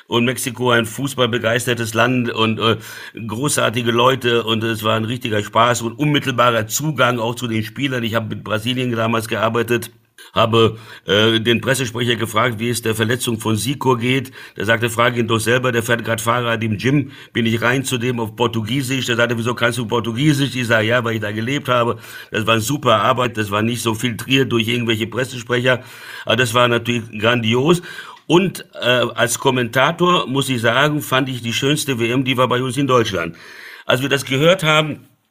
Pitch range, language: 115-130 Hz, German